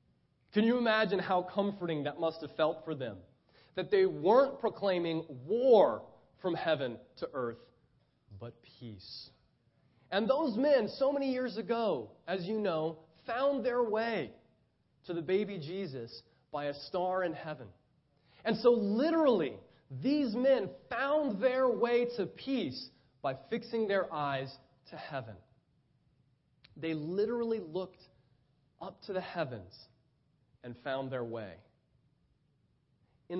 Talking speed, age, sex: 130 wpm, 30-49, male